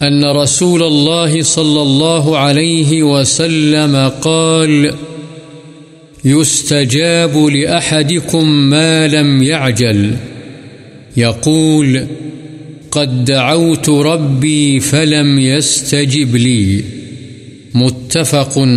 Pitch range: 130-150 Hz